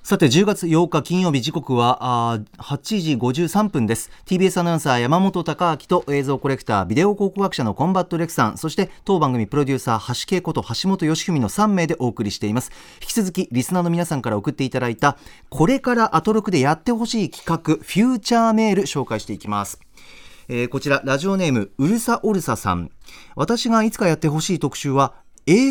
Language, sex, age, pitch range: Japanese, male, 40-59, 125-200 Hz